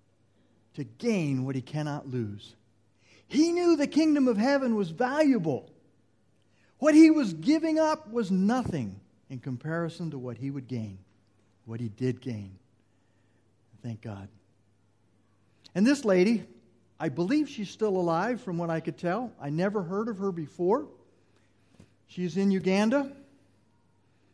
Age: 50-69